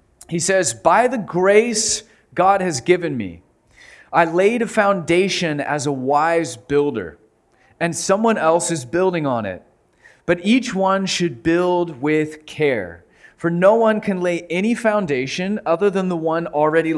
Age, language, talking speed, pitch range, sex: 30-49, English, 150 wpm, 145-185 Hz, male